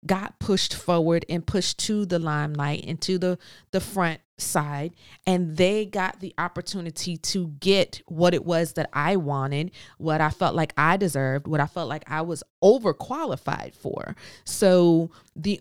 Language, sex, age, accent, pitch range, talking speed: English, female, 40-59, American, 150-190 Hz, 165 wpm